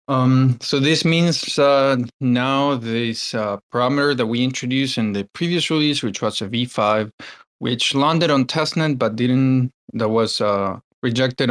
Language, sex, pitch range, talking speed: English, male, 110-135 Hz, 155 wpm